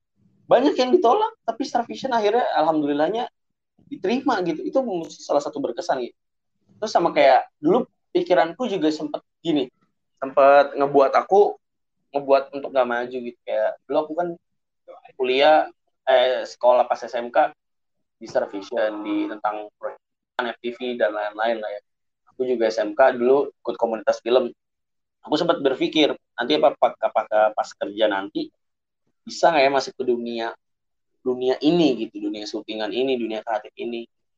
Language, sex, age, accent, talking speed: Indonesian, male, 20-39, native, 140 wpm